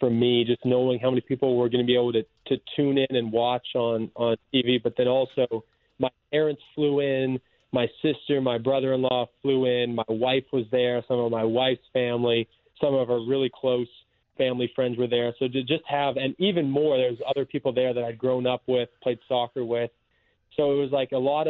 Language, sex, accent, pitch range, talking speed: English, male, American, 120-140 Hz, 215 wpm